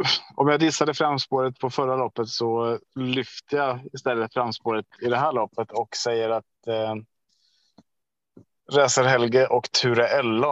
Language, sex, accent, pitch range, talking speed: Swedish, male, Norwegian, 115-130 Hz, 130 wpm